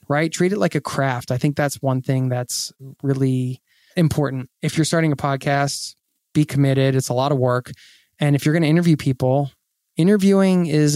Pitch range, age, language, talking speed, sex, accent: 130-170 Hz, 20-39, English, 190 wpm, male, American